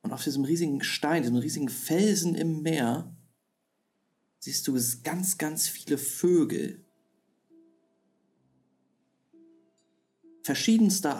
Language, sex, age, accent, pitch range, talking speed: German, male, 40-59, German, 125-180 Hz, 90 wpm